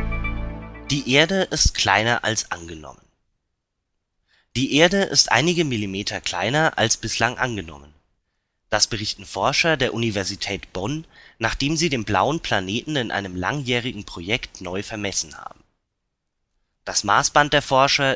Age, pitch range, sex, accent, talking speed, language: 30-49, 100-135 Hz, male, German, 120 wpm, German